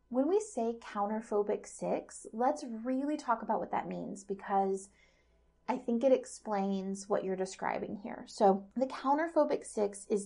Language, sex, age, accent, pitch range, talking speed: English, female, 30-49, American, 195-265 Hz, 150 wpm